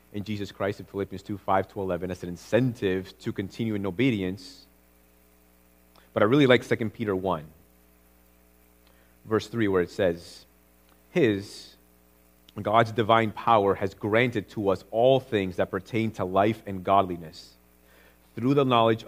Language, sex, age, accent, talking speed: English, male, 30-49, American, 140 wpm